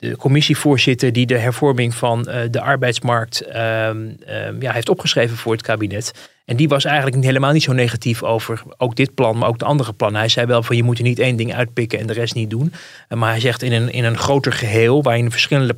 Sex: male